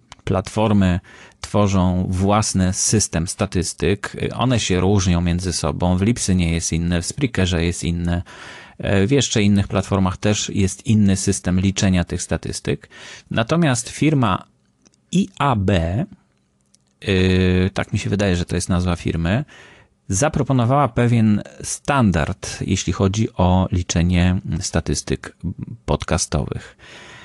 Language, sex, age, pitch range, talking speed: Polish, male, 30-49, 90-115 Hz, 110 wpm